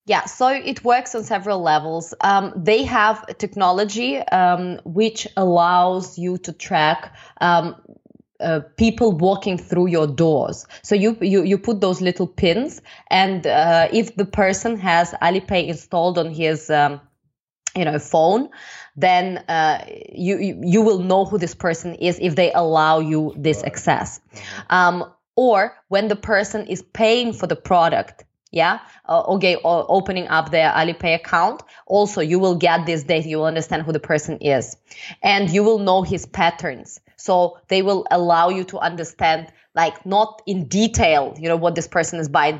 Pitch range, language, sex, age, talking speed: 165-200 Hz, English, female, 20-39, 165 wpm